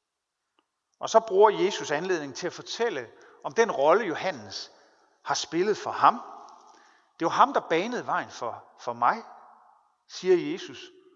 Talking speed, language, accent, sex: 150 wpm, Danish, native, male